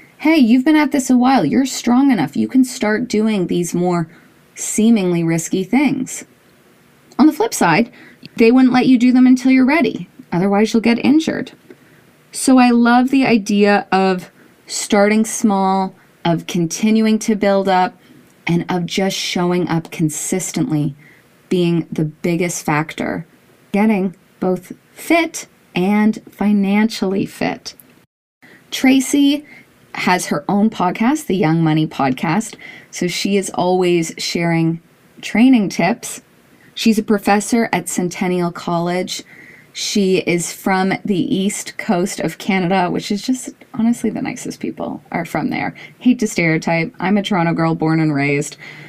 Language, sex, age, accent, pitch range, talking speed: English, female, 20-39, American, 170-235 Hz, 140 wpm